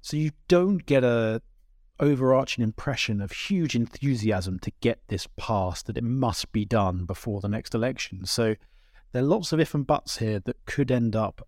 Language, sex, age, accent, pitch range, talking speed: English, male, 30-49, British, 105-130 Hz, 190 wpm